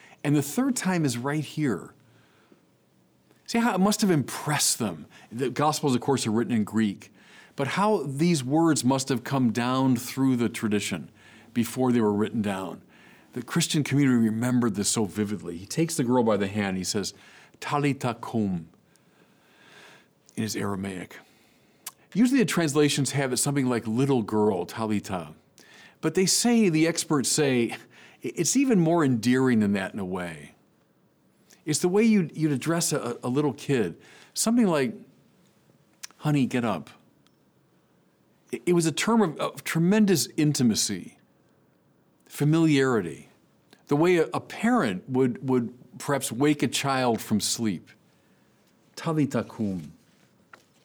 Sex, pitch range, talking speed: male, 110-155 Hz, 145 wpm